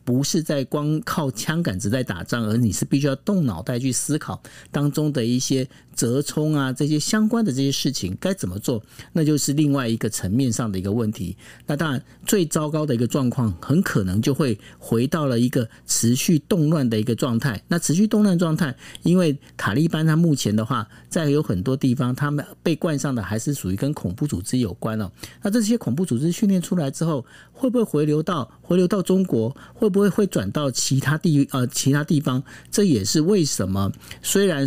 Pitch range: 120-170 Hz